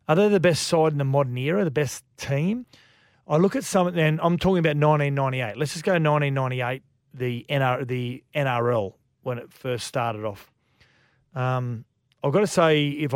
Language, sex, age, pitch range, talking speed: English, male, 40-59, 125-145 Hz, 180 wpm